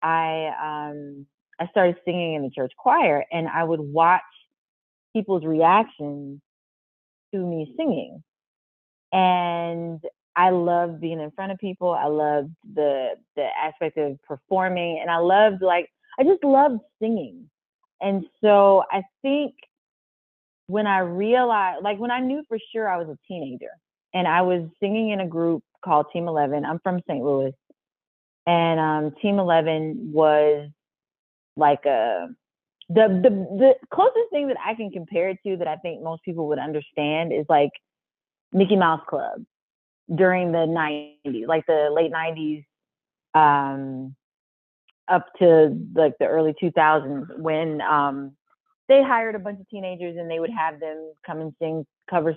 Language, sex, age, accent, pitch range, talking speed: English, female, 30-49, American, 155-195 Hz, 155 wpm